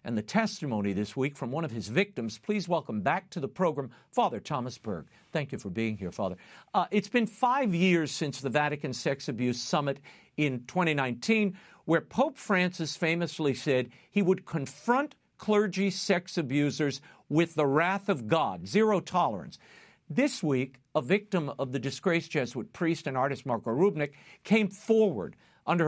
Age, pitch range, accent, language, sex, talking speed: 50-69, 140-195 Hz, American, English, male, 165 wpm